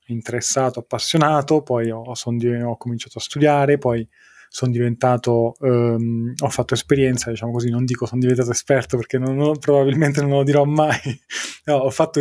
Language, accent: Italian, native